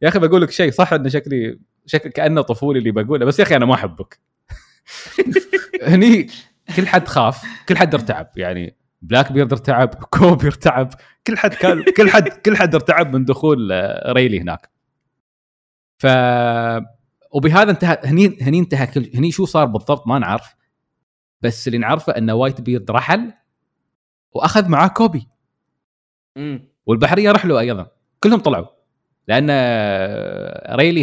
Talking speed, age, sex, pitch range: 145 wpm, 20-39, male, 115-160 Hz